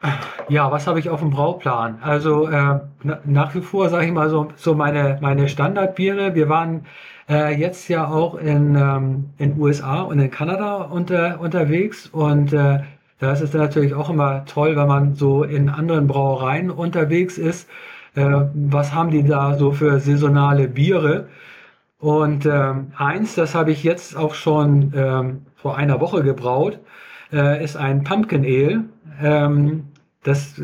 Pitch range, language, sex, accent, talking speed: 140-170 Hz, German, male, German, 160 wpm